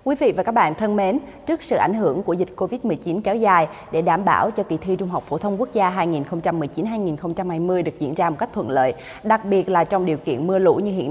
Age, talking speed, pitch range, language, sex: 20-39, 250 wpm, 170-230 Hz, Vietnamese, female